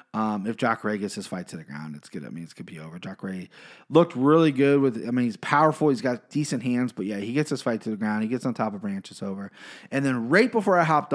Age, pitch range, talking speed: 30-49, 115-140 Hz, 295 wpm